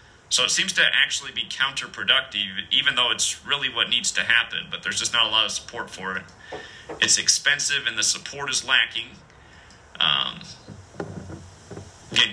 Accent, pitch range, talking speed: American, 80-120 Hz, 165 wpm